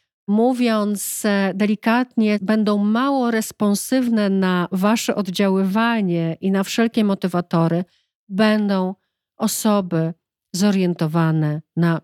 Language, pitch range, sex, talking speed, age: Polish, 185-215 Hz, female, 80 wpm, 40-59